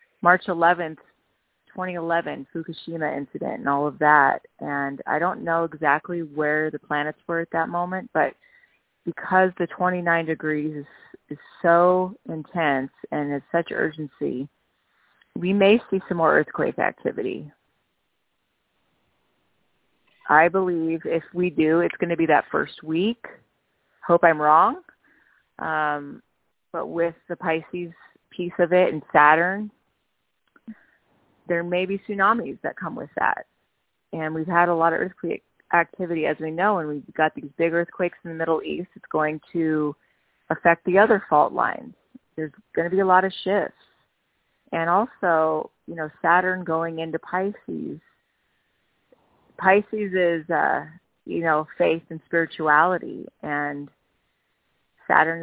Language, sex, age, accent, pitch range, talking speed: English, female, 30-49, American, 155-185 Hz, 140 wpm